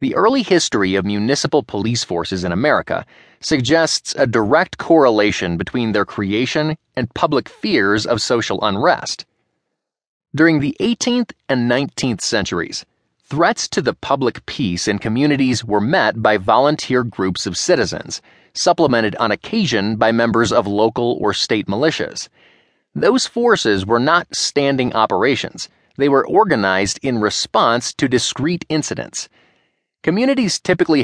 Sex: male